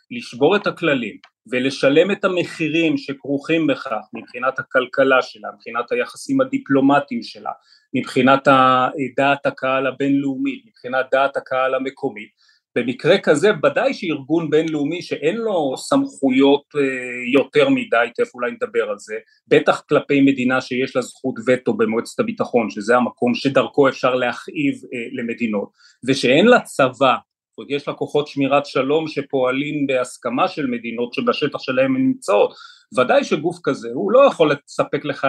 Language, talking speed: Hebrew, 130 wpm